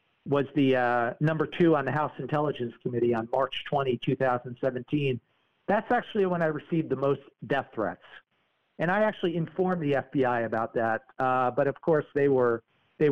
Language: English